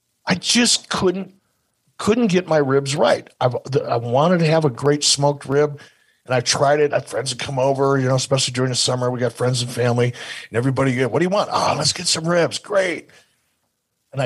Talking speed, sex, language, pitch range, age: 210 wpm, male, English, 120-145 Hz, 50-69